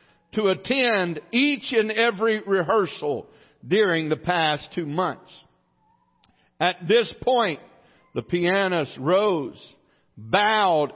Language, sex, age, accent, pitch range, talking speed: English, male, 50-69, American, 155-235 Hz, 100 wpm